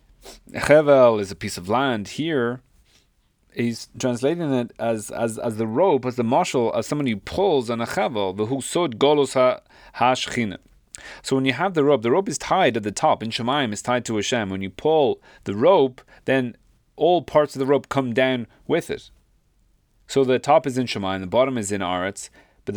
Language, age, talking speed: English, 30-49, 185 wpm